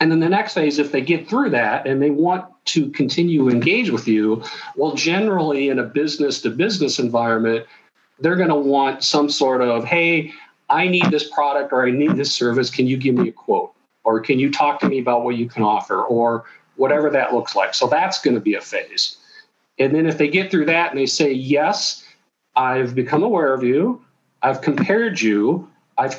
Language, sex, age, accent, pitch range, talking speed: English, male, 50-69, American, 120-160 Hz, 210 wpm